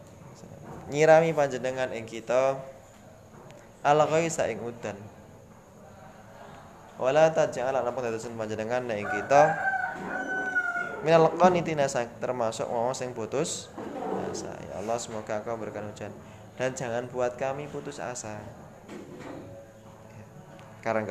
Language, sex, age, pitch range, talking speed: Indonesian, male, 20-39, 110-145 Hz, 85 wpm